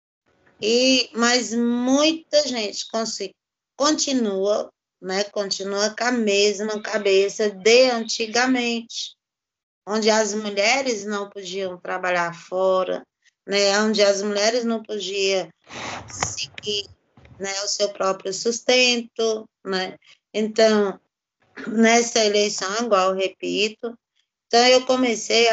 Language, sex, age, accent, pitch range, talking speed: Portuguese, female, 20-39, Brazilian, 195-235 Hz, 100 wpm